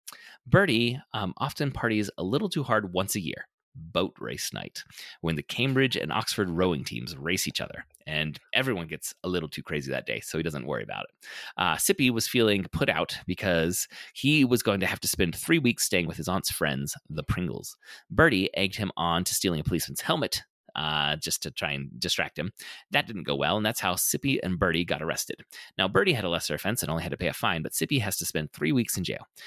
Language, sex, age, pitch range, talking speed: English, male, 30-49, 85-120 Hz, 230 wpm